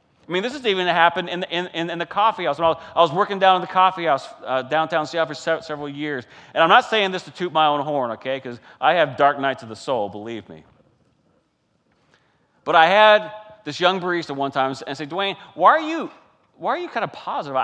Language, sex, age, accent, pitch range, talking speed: English, male, 40-59, American, 140-185 Hz, 245 wpm